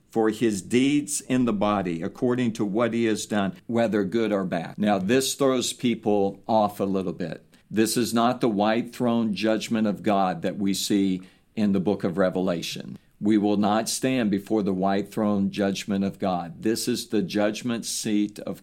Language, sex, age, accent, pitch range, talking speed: English, male, 50-69, American, 100-115 Hz, 185 wpm